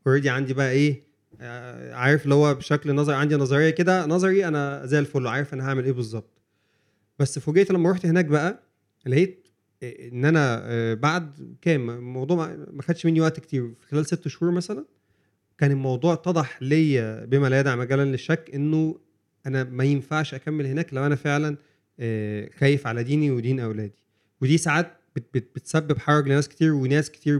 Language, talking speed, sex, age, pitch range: Arabic, 165 wpm, male, 30-49, 125-155 Hz